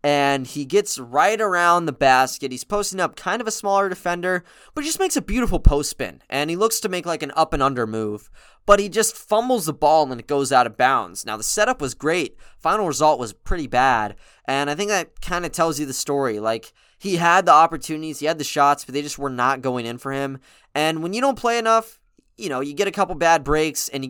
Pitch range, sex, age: 130-170 Hz, male, 20-39